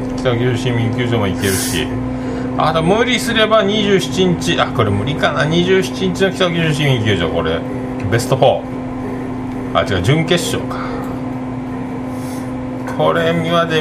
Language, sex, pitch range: Japanese, male, 125-145 Hz